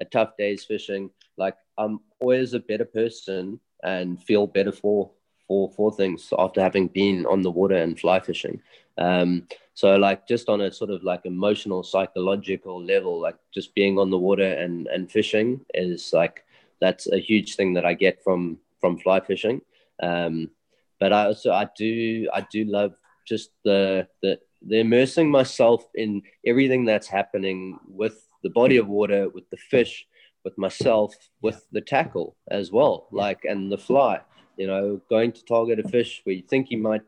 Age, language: 30-49, English